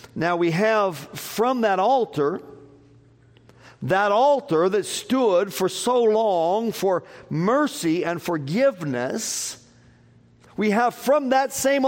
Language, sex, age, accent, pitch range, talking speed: English, male, 50-69, American, 125-195 Hz, 110 wpm